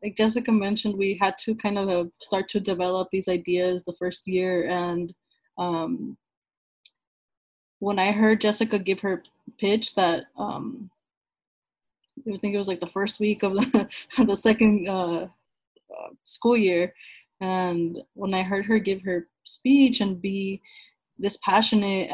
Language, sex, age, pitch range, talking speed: English, female, 20-39, 185-220 Hz, 145 wpm